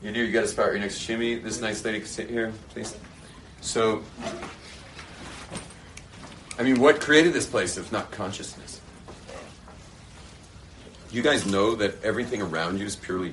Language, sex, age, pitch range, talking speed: English, male, 40-59, 80-100 Hz, 160 wpm